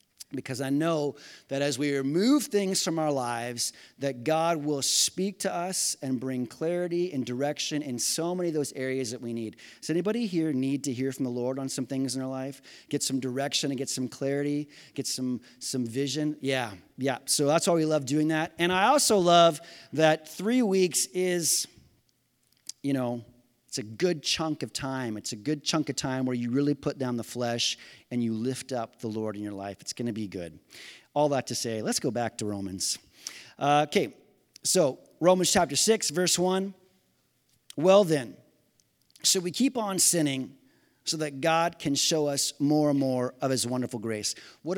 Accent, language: American, English